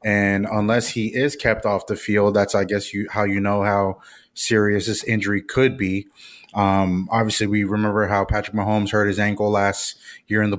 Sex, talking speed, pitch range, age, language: male, 195 wpm, 105-125 Hz, 20-39, English